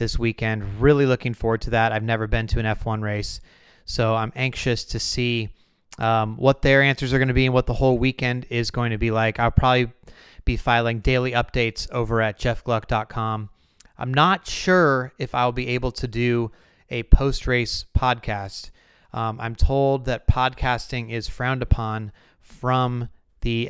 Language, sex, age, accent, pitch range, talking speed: English, male, 30-49, American, 110-130 Hz, 170 wpm